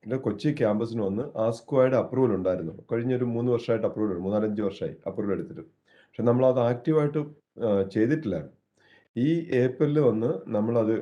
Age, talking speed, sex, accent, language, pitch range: 30-49, 125 wpm, male, native, Malayalam, 105-120 Hz